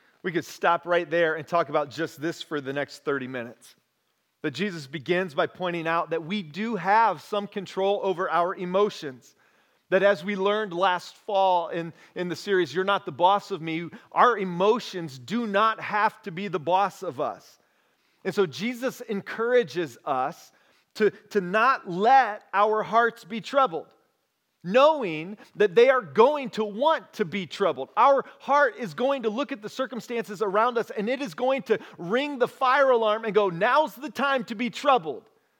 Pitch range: 175-235 Hz